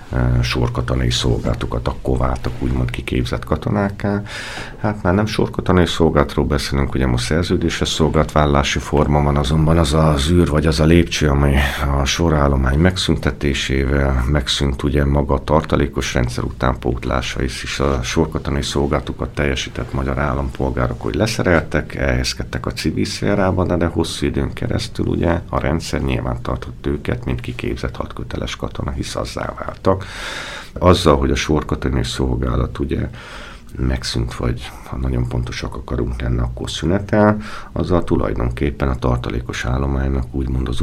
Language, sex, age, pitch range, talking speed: Hungarian, male, 50-69, 65-80 Hz, 130 wpm